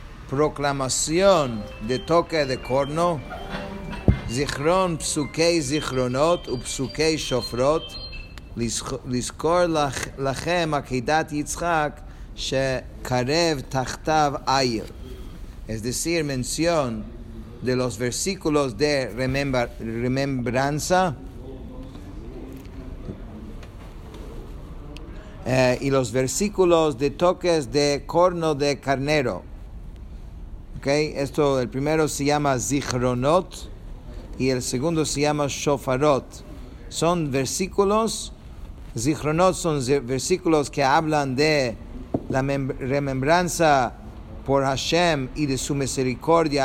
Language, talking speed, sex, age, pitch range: English, 85 wpm, male, 50-69, 120-155 Hz